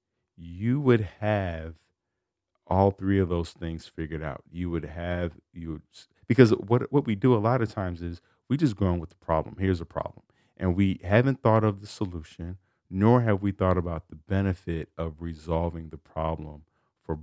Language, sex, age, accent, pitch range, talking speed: English, male, 40-59, American, 80-100 Hz, 190 wpm